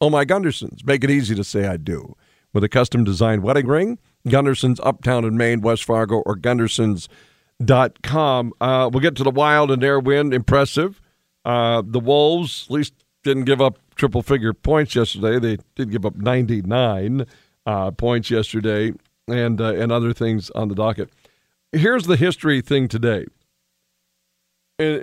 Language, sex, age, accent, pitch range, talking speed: English, male, 50-69, American, 105-140 Hz, 160 wpm